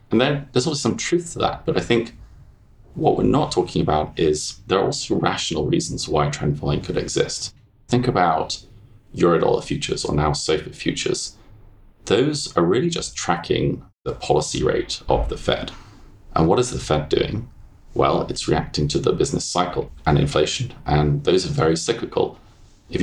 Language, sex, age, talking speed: English, male, 30-49, 175 wpm